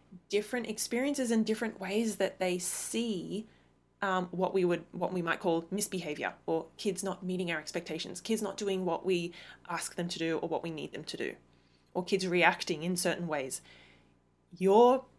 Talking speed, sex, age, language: 180 wpm, female, 20-39, English